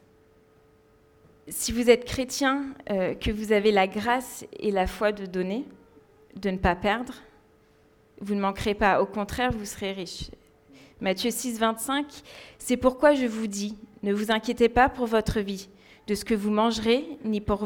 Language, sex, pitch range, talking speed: French, female, 200-245 Hz, 170 wpm